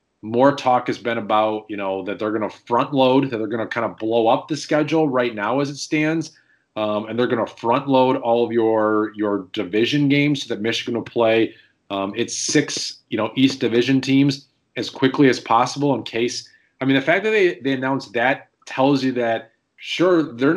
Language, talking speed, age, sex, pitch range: English, 215 wpm, 30-49, male, 110-135 Hz